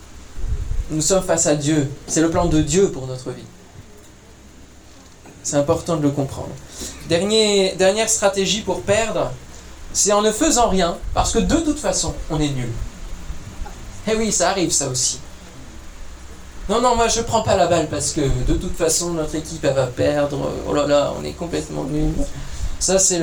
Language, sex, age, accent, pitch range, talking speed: French, male, 20-39, French, 135-195 Hz, 180 wpm